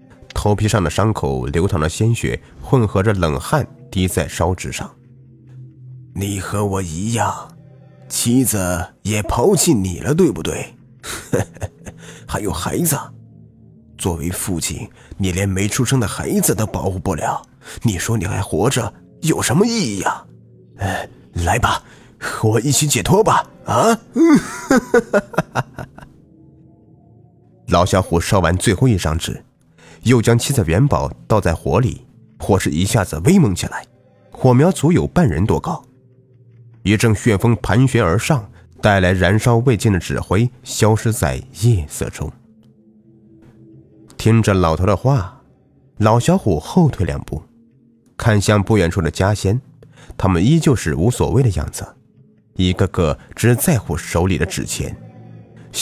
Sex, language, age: male, Chinese, 30-49